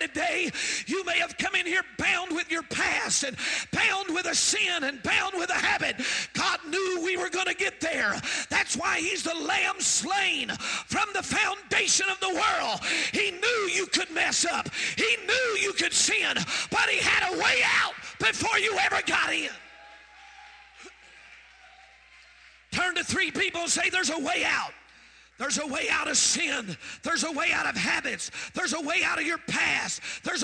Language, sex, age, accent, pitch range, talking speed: English, male, 40-59, American, 335-395 Hz, 185 wpm